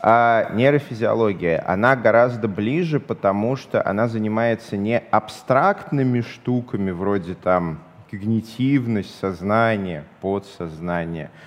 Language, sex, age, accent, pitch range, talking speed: Russian, male, 30-49, native, 105-135 Hz, 90 wpm